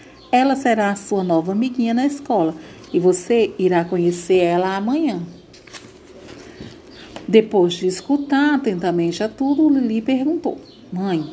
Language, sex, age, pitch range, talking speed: Portuguese, female, 40-59, 175-250 Hz, 120 wpm